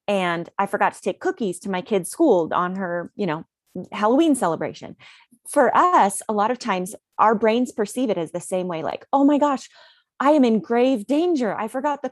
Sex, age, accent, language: female, 30-49, American, English